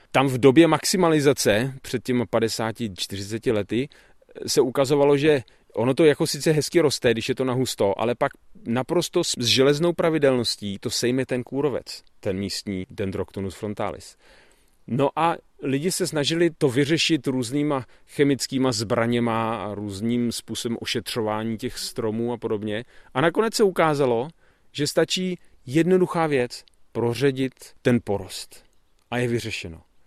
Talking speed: 135 wpm